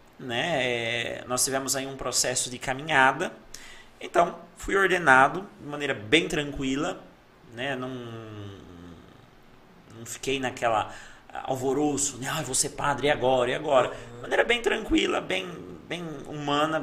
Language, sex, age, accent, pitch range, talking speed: Portuguese, male, 30-49, Brazilian, 125-160 Hz, 125 wpm